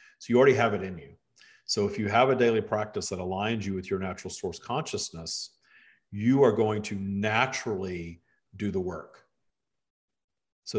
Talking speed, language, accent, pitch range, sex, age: 170 wpm, English, American, 95-110 Hz, male, 50-69